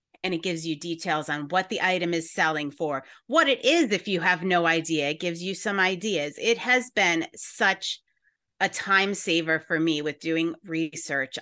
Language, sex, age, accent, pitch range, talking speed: English, female, 30-49, American, 170-240 Hz, 195 wpm